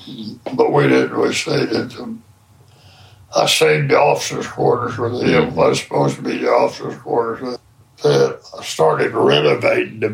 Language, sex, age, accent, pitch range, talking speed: English, male, 60-79, American, 115-165 Hz, 140 wpm